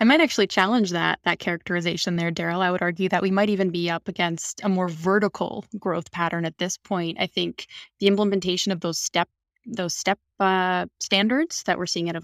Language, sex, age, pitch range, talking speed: English, female, 20-39, 175-205 Hz, 210 wpm